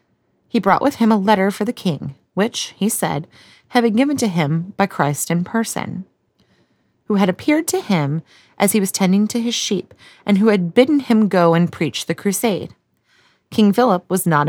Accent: American